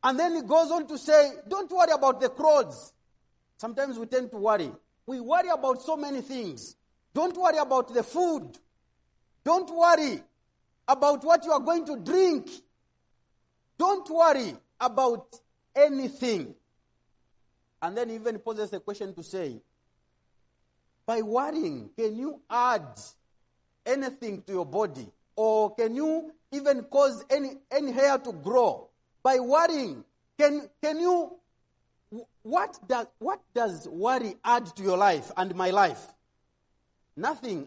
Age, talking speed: 40-59, 140 wpm